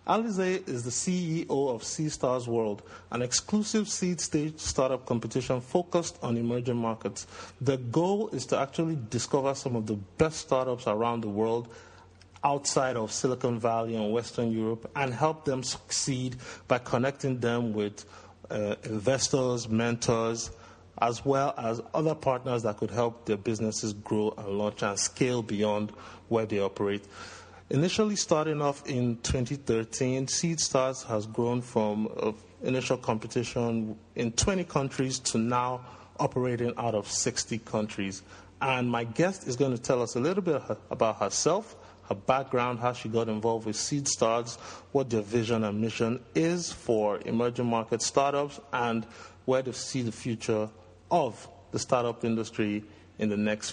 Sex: male